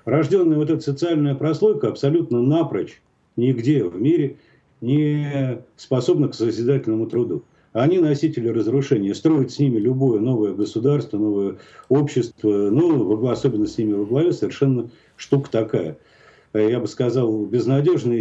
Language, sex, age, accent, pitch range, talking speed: Russian, male, 50-69, native, 115-160 Hz, 130 wpm